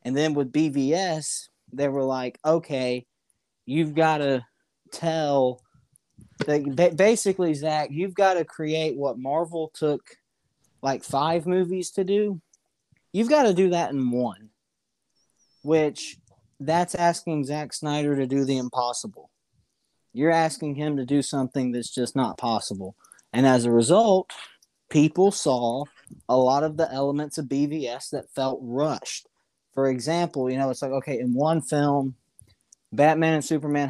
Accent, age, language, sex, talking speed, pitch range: American, 20-39, English, male, 145 wpm, 130-155 Hz